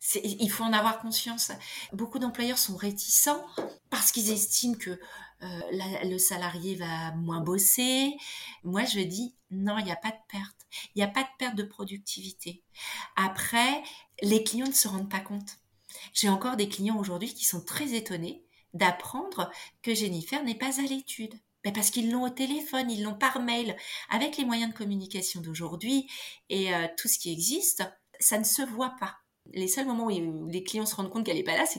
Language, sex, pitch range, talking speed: French, female, 180-235 Hz, 195 wpm